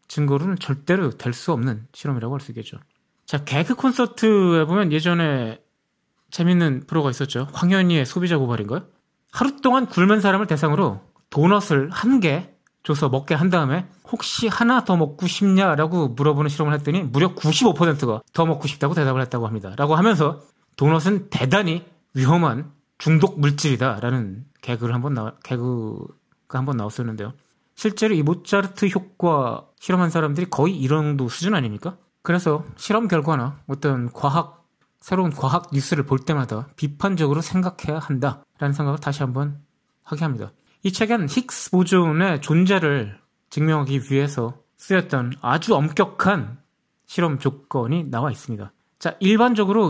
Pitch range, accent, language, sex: 135-185 Hz, native, Korean, male